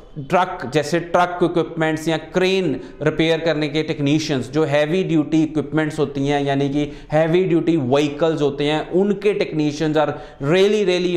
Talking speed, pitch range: 150 wpm, 150-180 Hz